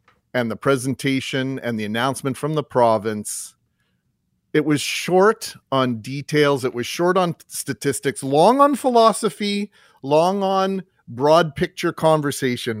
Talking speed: 125 wpm